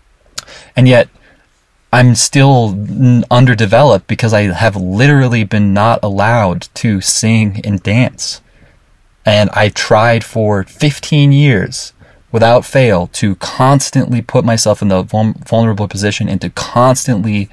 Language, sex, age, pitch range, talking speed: English, male, 20-39, 95-120 Hz, 120 wpm